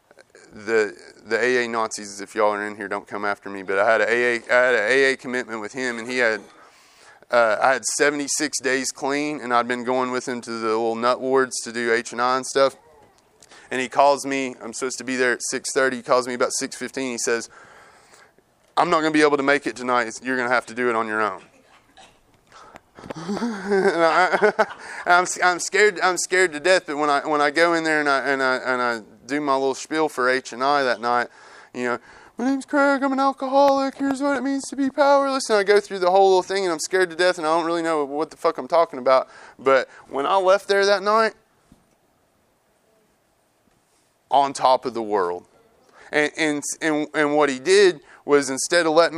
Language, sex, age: English, male, 20-39